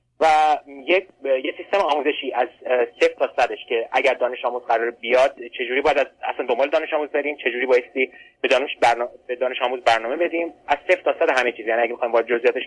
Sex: male